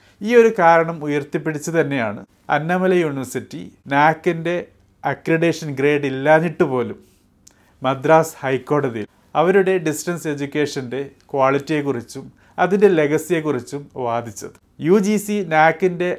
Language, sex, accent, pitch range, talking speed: Malayalam, male, native, 135-170 Hz, 90 wpm